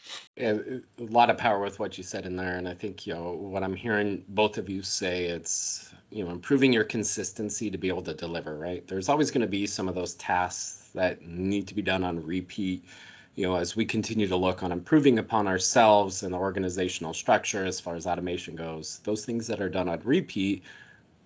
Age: 30-49